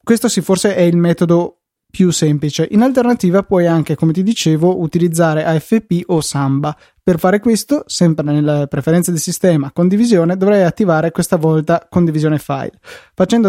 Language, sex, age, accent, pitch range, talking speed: Italian, male, 20-39, native, 155-185 Hz, 155 wpm